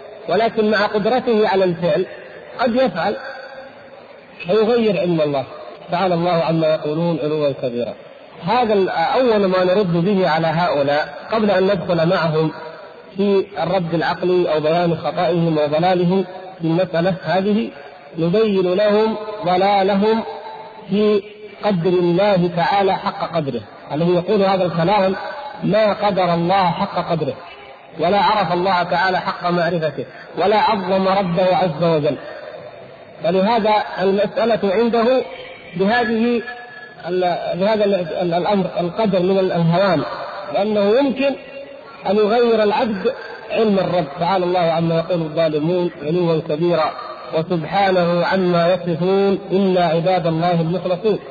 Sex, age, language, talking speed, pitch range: male, 50-69, Arabic, 110 wpm, 175-210 Hz